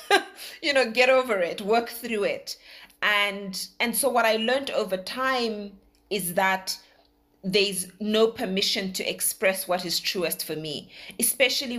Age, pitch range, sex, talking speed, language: 30-49, 180-250 Hz, female, 150 wpm, English